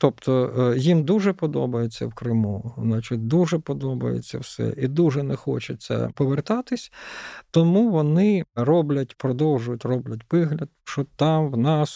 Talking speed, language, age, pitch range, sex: 125 wpm, Ukrainian, 50-69, 120-155 Hz, male